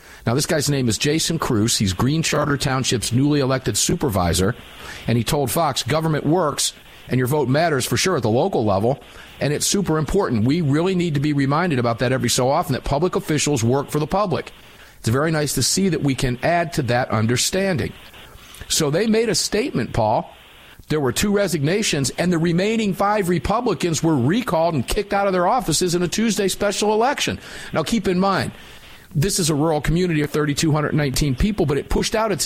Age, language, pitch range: 50-69, English, 140-190 Hz